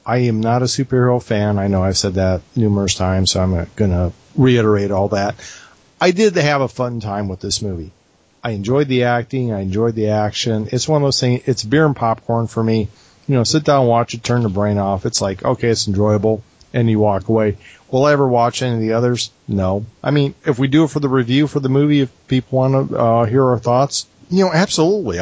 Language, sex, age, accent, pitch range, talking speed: English, male, 40-59, American, 105-135 Hz, 235 wpm